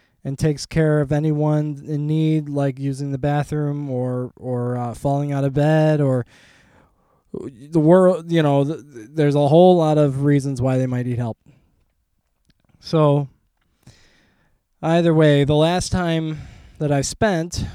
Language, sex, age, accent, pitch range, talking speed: English, male, 20-39, American, 130-155 Hz, 150 wpm